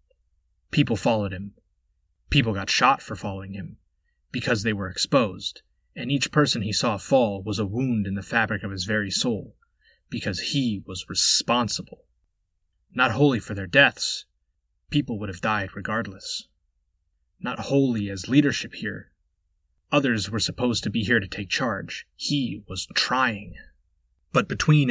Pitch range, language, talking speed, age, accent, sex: 80-120 Hz, English, 150 wpm, 30-49, American, male